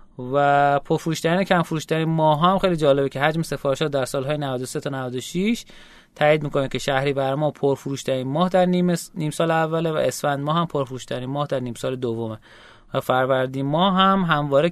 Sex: male